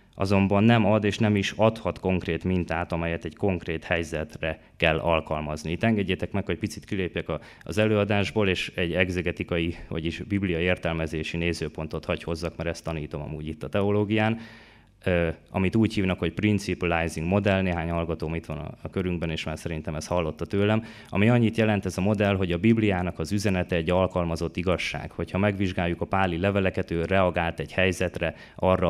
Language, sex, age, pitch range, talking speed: Hungarian, male, 20-39, 80-100 Hz, 170 wpm